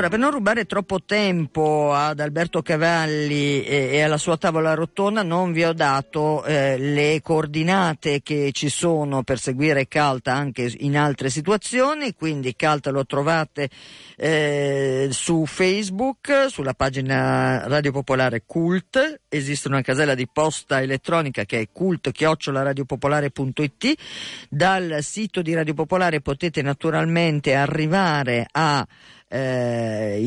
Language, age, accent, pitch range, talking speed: Italian, 50-69, native, 135-170 Hz, 125 wpm